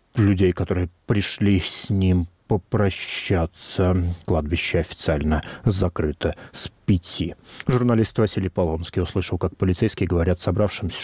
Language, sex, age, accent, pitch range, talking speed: Russian, male, 40-59, native, 85-105 Hz, 105 wpm